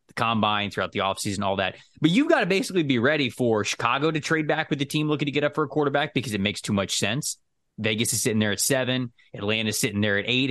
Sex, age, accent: male, 20-39, American